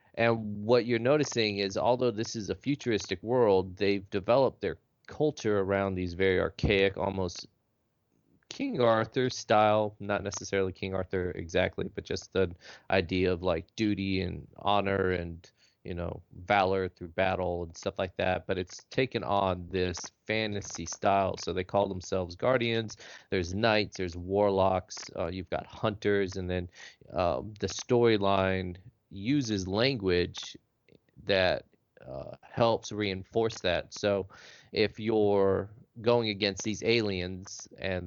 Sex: male